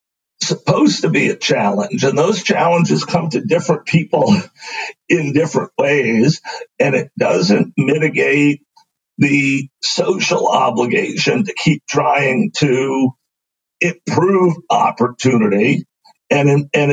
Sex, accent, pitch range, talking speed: male, American, 140-175 Hz, 105 wpm